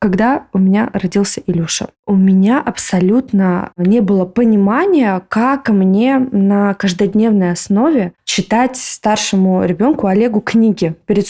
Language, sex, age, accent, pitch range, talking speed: Russian, female, 20-39, native, 185-230 Hz, 115 wpm